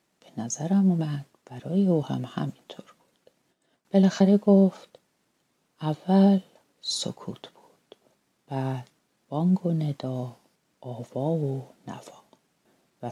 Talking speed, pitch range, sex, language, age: 90 wpm, 130-185 Hz, female, Persian, 40-59